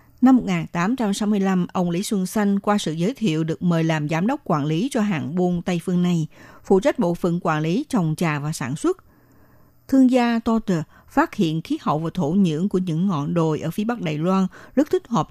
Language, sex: Vietnamese, female